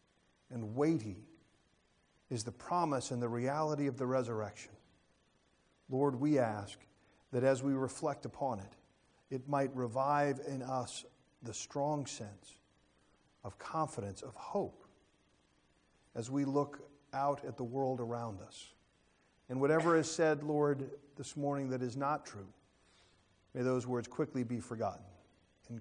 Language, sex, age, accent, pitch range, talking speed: English, male, 40-59, American, 120-160 Hz, 135 wpm